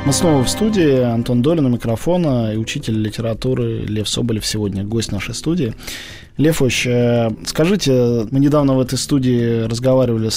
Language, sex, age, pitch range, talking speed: Russian, male, 20-39, 115-145 Hz, 145 wpm